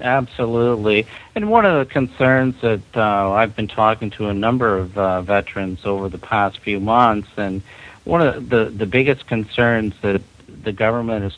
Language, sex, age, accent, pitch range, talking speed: English, male, 50-69, American, 95-115 Hz, 180 wpm